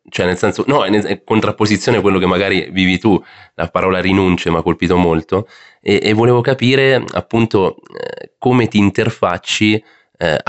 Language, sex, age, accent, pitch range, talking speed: Italian, male, 30-49, native, 85-105 Hz, 165 wpm